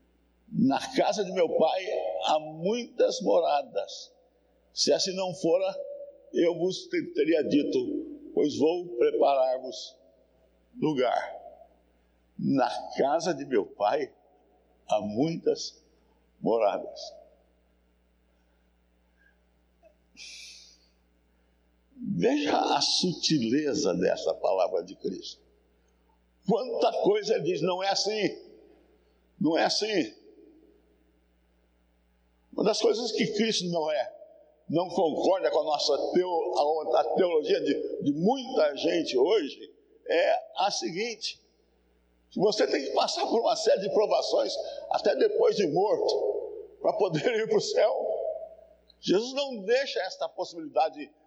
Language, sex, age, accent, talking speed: Portuguese, male, 60-79, Brazilian, 110 wpm